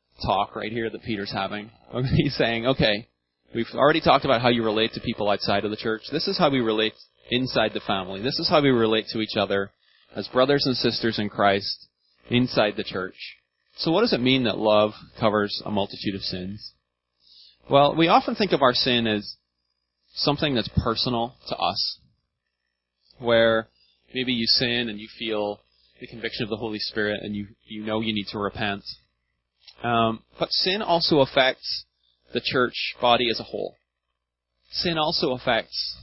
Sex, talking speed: male, 180 wpm